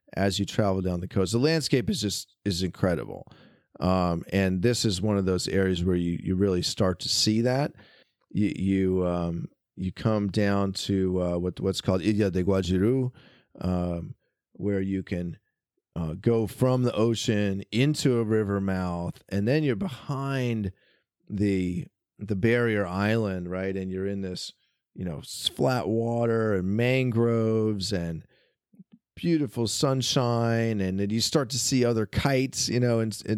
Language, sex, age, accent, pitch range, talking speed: English, male, 40-59, American, 95-115 Hz, 160 wpm